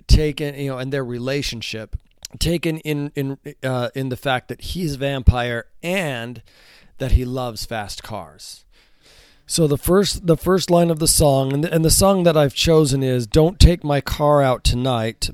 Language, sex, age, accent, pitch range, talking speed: English, male, 40-59, American, 120-145 Hz, 185 wpm